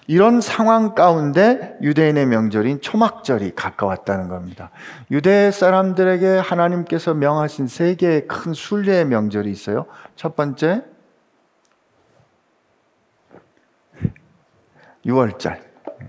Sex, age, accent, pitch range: male, 50-69, native, 140-180 Hz